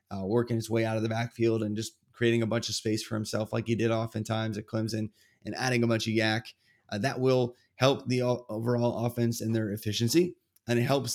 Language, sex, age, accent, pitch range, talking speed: English, male, 20-39, American, 110-120 Hz, 225 wpm